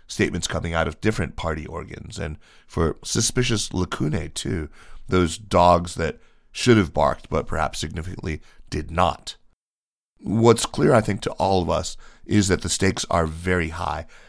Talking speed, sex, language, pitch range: 160 wpm, male, English, 80-95 Hz